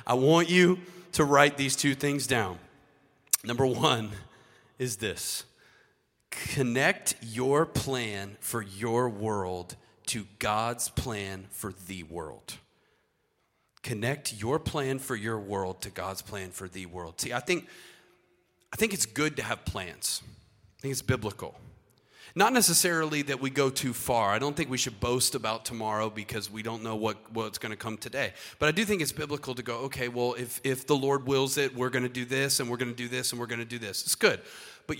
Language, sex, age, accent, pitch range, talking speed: English, male, 30-49, American, 115-145 Hz, 190 wpm